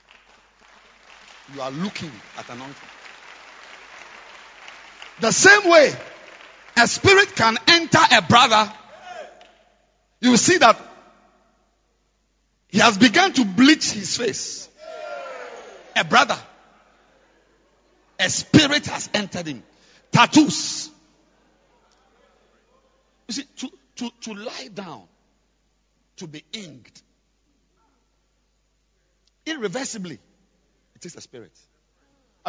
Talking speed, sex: 90 wpm, male